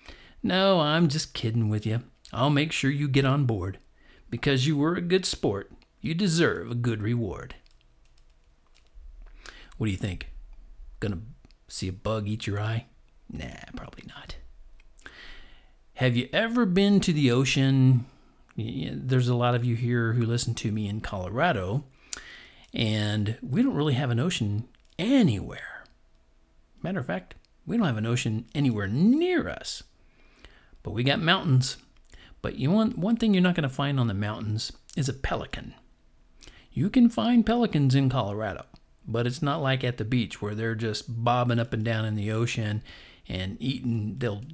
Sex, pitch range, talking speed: male, 105-135 Hz, 165 wpm